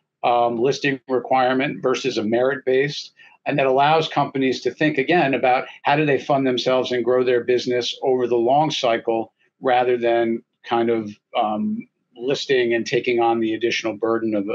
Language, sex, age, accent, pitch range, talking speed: English, male, 50-69, American, 115-130 Hz, 170 wpm